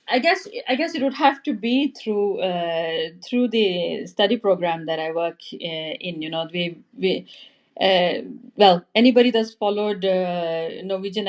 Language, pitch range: English, 170-220 Hz